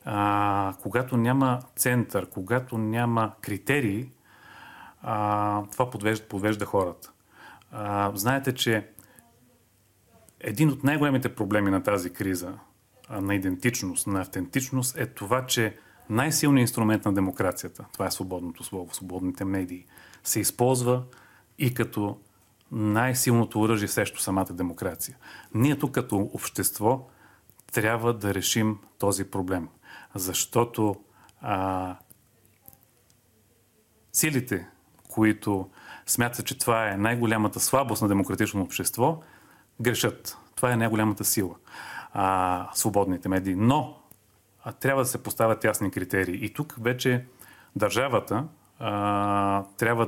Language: Bulgarian